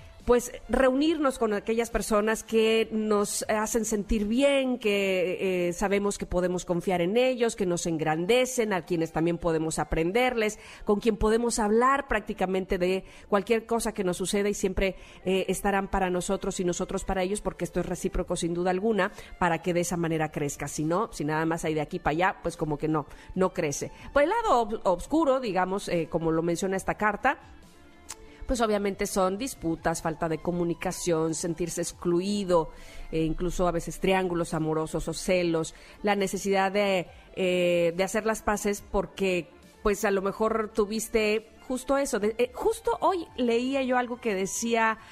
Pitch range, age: 180-225 Hz, 40-59